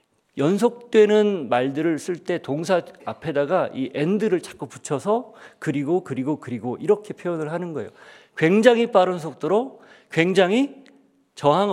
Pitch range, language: 145-215 Hz, Korean